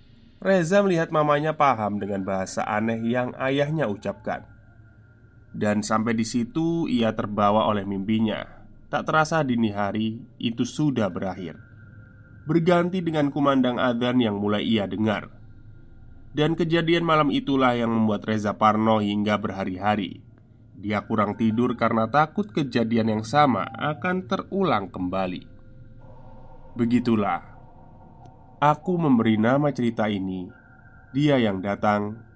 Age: 20-39